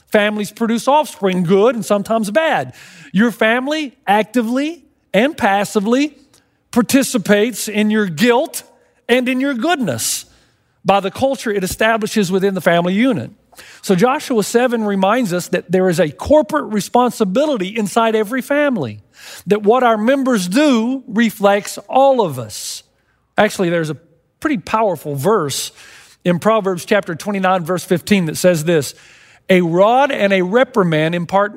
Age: 50-69